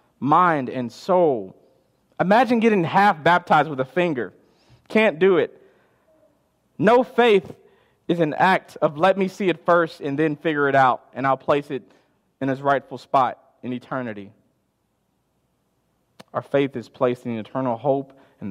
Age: 40-59